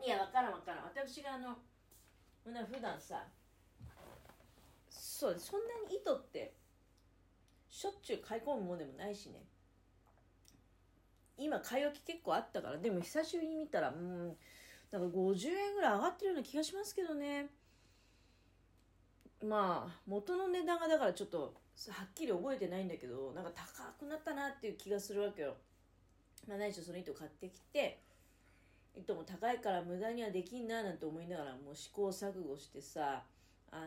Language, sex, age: Japanese, female, 40-59